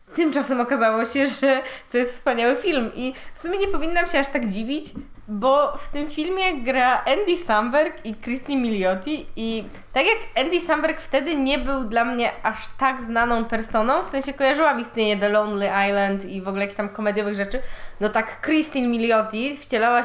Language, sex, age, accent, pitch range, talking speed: Polish, female, 20-39, native, 215-275 Hz, 180 wpm